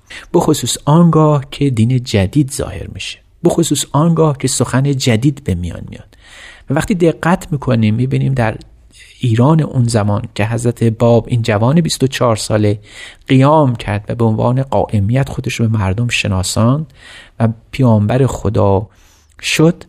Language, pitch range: Persian, 105-135 Hz